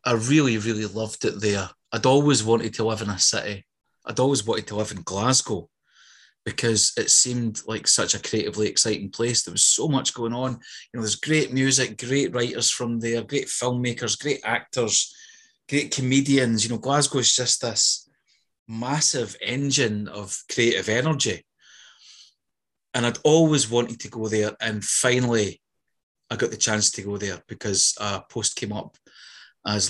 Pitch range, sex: 105-125 Hz, male